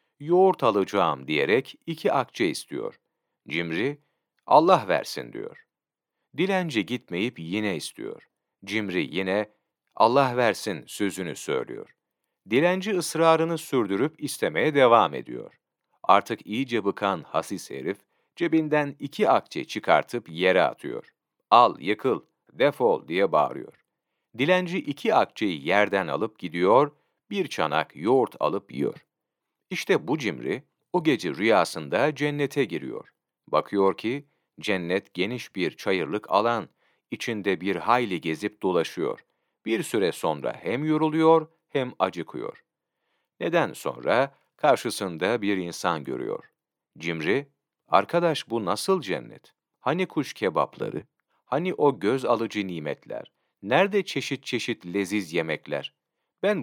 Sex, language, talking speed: male, Turkish, 110 wpm